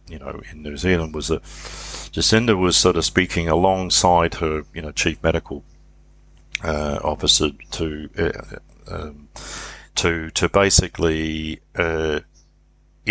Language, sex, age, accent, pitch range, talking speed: English, male, 50-69, Australian, 75-90 Hz, 125 wpm